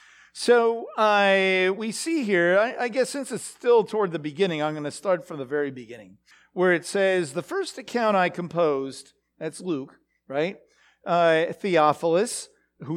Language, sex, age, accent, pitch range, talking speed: English, male, 50-69, American, 165-230 Hz, 160 wpm